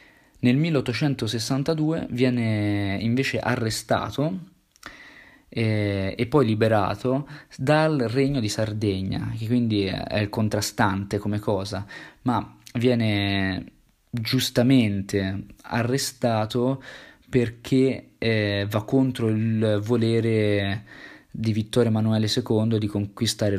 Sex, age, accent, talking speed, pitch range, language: male, 20-39, native, 90 wpm, 105-120 Hz, Italian